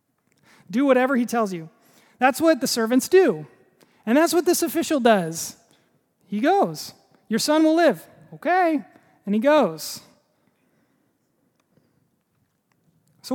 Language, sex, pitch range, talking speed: English, male, 185-245 Hz, 120 wpm